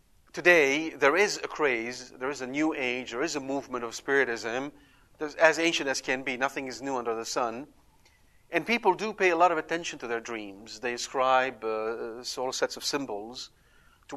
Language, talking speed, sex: English, 195 wpm, male